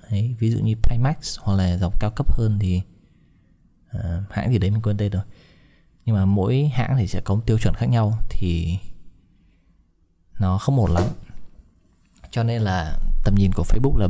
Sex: male